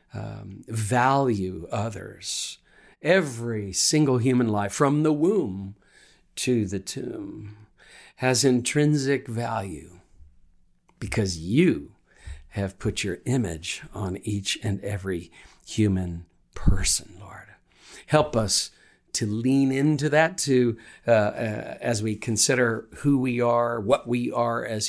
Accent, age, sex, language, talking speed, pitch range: American, 50-69, male, English, 115 wpm, 100-125 Hz